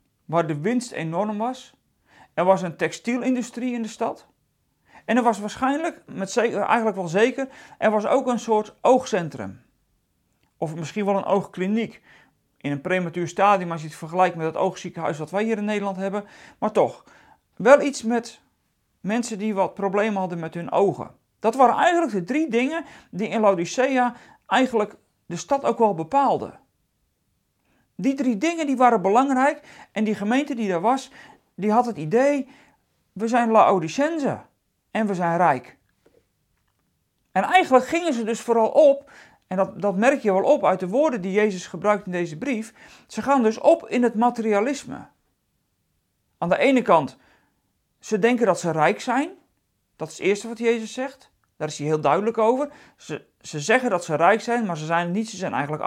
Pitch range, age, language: 190-255 Hz, 40-59, Dutch